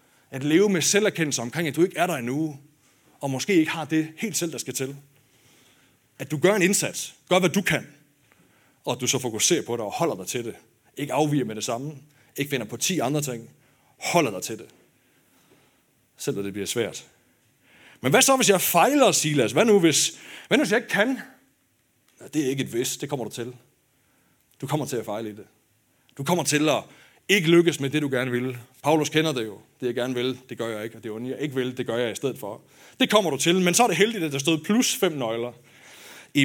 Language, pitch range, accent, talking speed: Danish, 125-165 Hz, native, 235 wpm